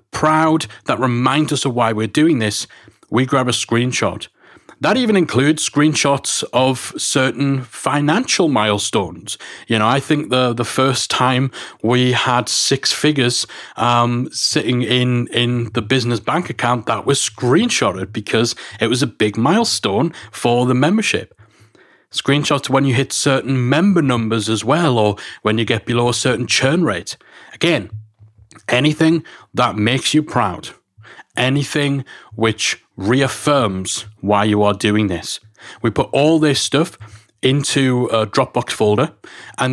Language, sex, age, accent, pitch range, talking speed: English, male, 30-49, British, 115-145 Hz, 145 wpm